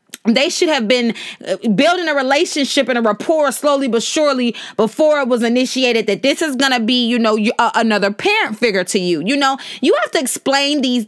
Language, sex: English, female